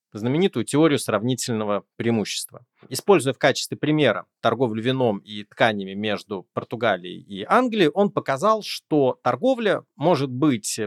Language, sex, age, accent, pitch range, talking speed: Russian, male, 30-49, native, 115-165 Hz, 120 wpm